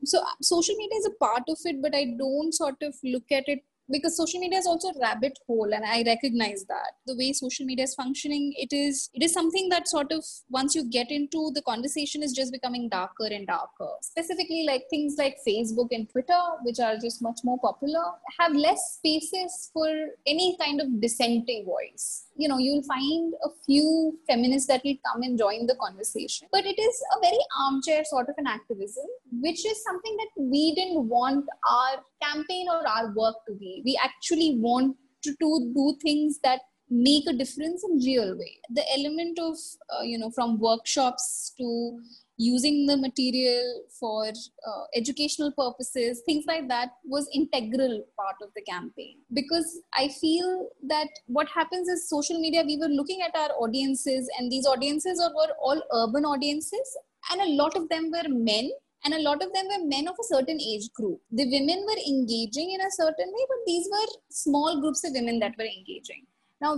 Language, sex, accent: English, female, Indian